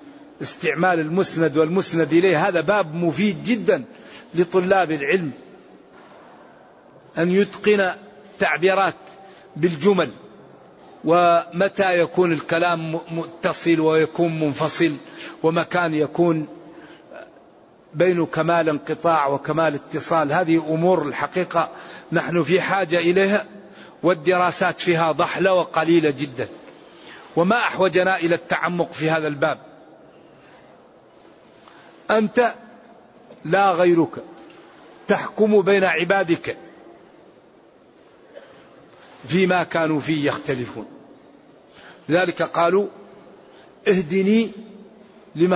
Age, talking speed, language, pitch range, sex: 50-69, 80 wpm, Arabic, 165-205 Hz, male